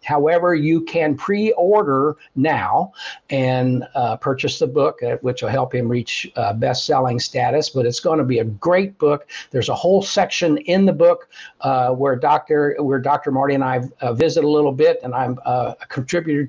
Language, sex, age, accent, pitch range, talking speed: English, male, 60-79, American, 135-170 Hz, 185 wpm